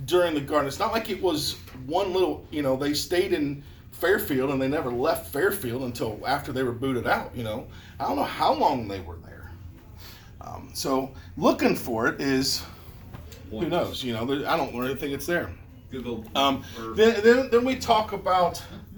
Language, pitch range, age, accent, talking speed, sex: English, 110-180 Hz, 40-59, American, 185 wpm, male